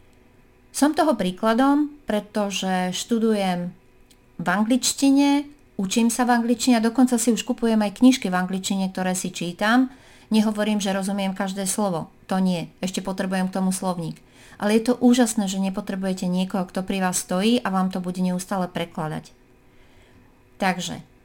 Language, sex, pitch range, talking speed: Slovak, female, 185-230 Hz, 150 wpm